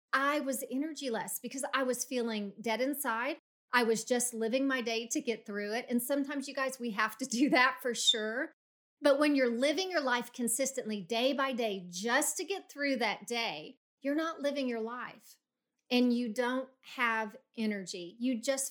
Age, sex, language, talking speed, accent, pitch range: 40-59, female, English, 190 wpm, American, 235-295 Hz